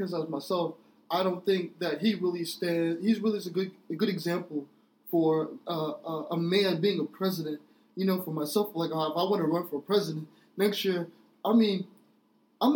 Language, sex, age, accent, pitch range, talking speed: English, male, 20-39, American, 175-220 Hz, 190 wpm